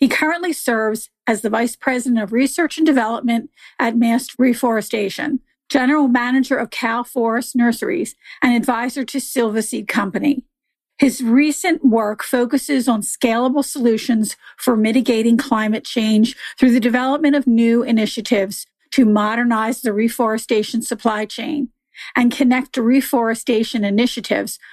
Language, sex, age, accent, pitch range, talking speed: English, female, 40-59, American, 220-255 Hz, 130 wpm